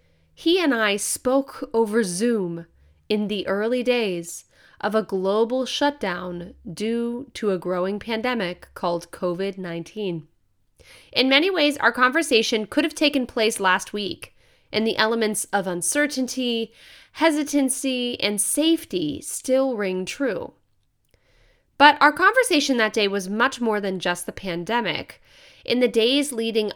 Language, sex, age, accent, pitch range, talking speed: English, female, 20-39, American, 200-275 Hz, 135 wpm